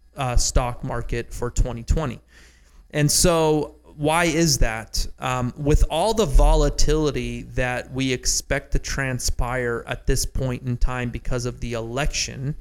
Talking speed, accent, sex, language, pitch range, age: 140 wpm, American, male, English, 120-140 Hz, 30-49